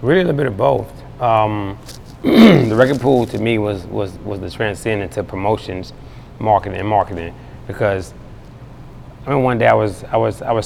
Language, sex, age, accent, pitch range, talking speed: English, male, 30-49, American, 105-125 Hz, 180 wpm